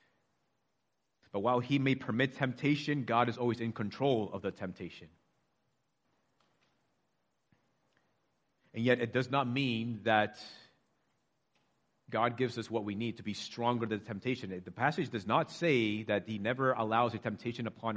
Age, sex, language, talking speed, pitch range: 30-49, male, English, 145 wpm, 105-130 Hz